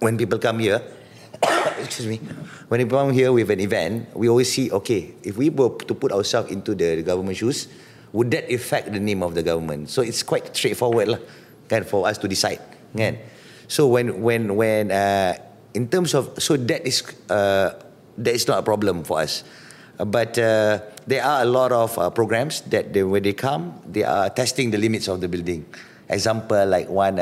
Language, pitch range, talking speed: English, 95-120 Hz, 200 wpm